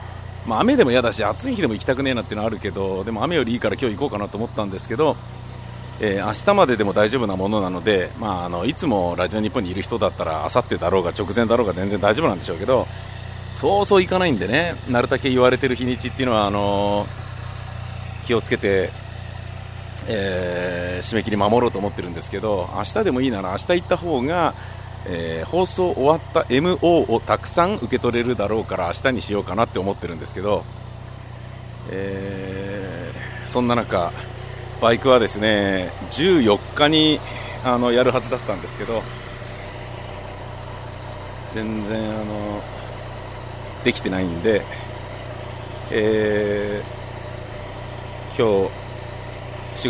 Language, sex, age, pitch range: Japanese, male, 40-59, 105-125 Hz